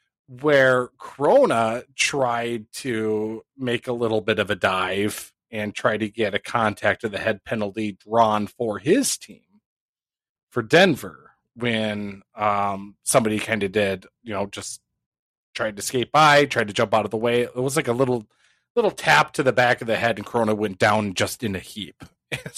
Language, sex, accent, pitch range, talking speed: English, male, American, 105-130 Hz, 185 wpm